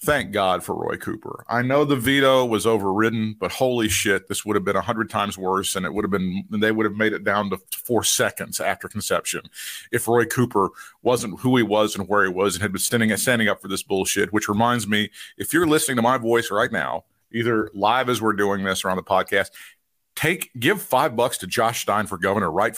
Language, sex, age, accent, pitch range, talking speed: English, male, 50-69, American, 105-140 Hz, 230 wpm